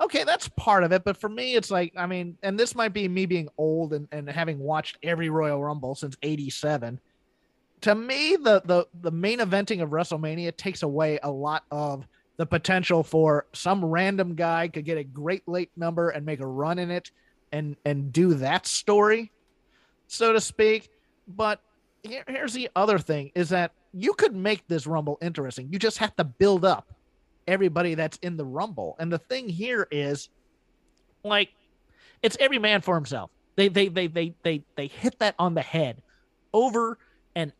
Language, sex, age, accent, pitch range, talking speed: English, male, 30-49, American, 150-210 Hz, 190 wpm